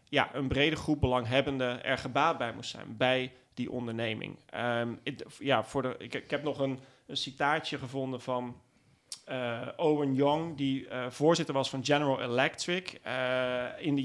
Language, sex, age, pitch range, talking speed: Dutch, male, 40-59, 125-150 Hz, 170 wpm